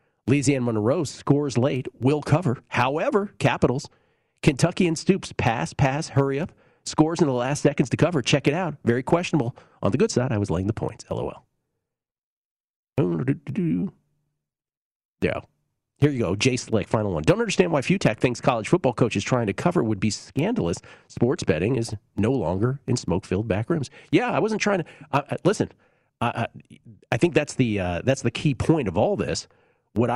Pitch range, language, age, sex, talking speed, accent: 115-155 Hz, English, 40-59, male, 180 wpm, American